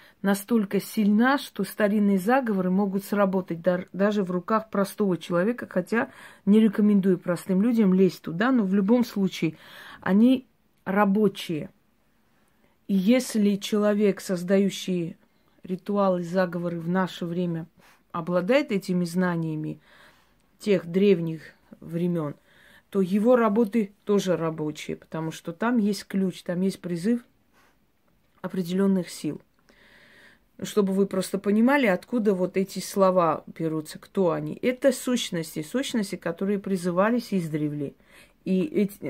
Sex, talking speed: female, 115 wpm